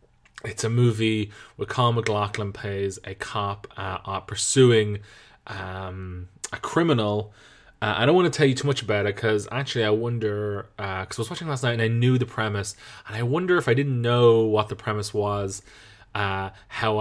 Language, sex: English, male